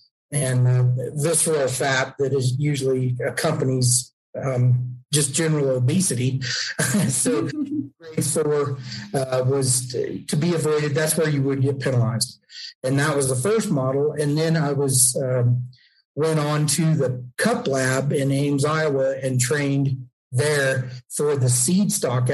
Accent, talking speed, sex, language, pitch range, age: American, 140 wpm, male, English, 125-145 Hz, 50-69